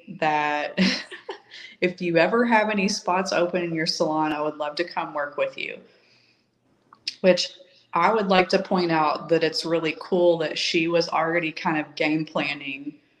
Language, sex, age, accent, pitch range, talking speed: English, female, 30-49, American, 150-190 Hz, 175 wpm